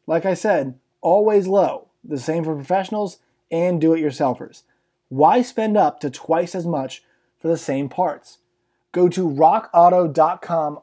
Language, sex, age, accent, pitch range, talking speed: English, male, 20-39, American, 150-190 Hz, 140 wpm